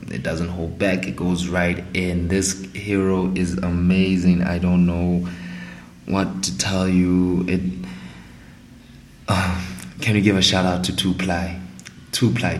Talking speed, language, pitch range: 140 wpm, English, 85-95 Hz